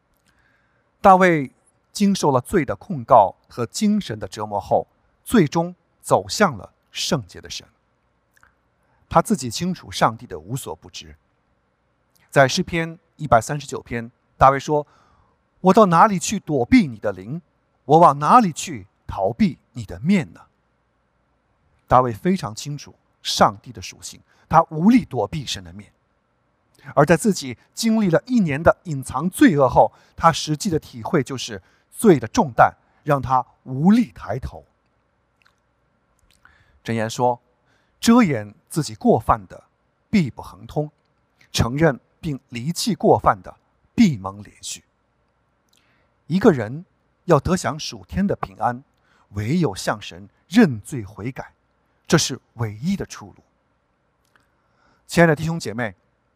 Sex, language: male, English